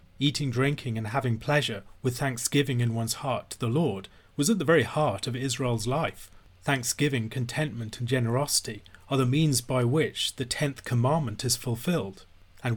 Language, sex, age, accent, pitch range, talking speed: English, male, 40-59, British, 115-140 Hz, 170 wpm